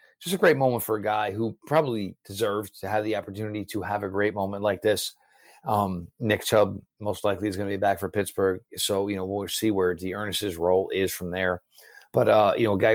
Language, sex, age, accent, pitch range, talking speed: English, male, 40-59, American, 100-110 Hz, 230 wpm